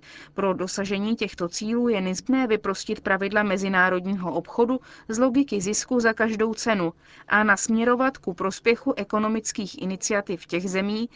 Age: 30-49